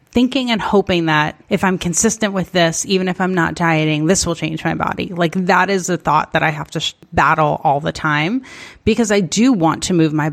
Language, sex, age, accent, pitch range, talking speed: English, female, 30-49, American, 150-185 Hz, 225 wpm